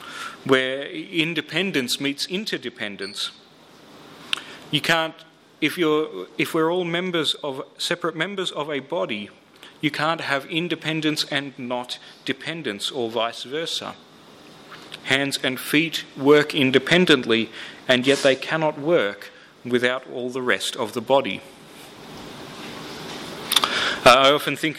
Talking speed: 120 wpm